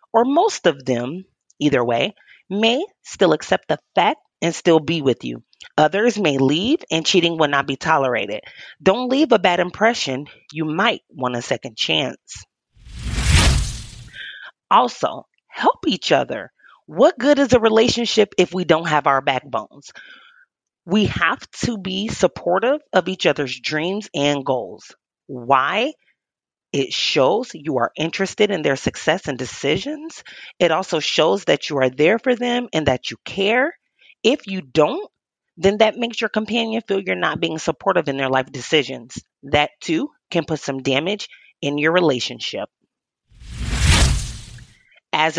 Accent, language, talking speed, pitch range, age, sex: American, English, 150 wpm, 140-225 Hz, 30-49, female